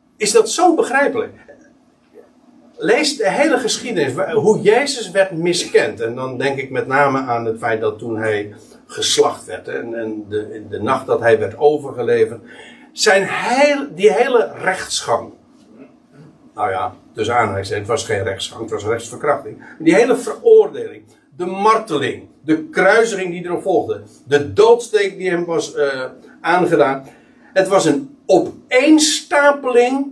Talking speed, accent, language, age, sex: 140 wpm, Dutch, Dutch, 60-79, male